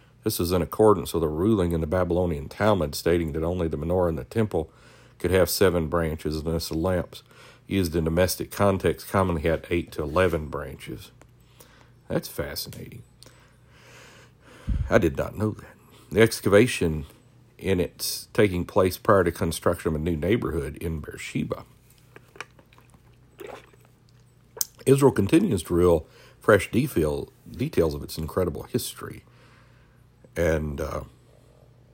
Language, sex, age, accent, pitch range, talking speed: English, male, 60-79, American, 80-110 Hz, 135 wpm